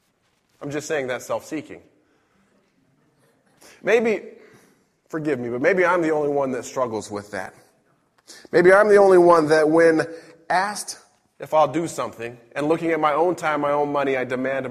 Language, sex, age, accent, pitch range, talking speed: English, male, 20-39, American, 140-175 Hz, 165 wpm